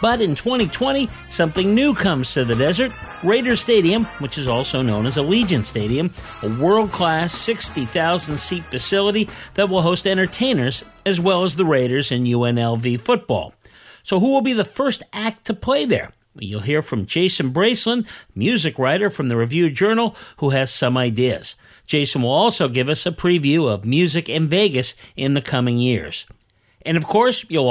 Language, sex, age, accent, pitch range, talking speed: English, male, 50-69, American, 130-205 Hz, 170 wpm